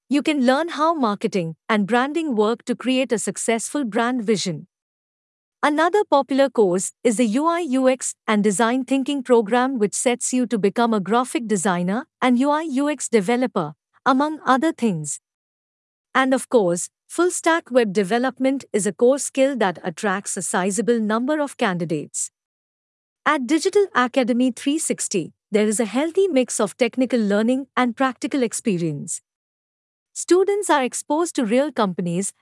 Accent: Indian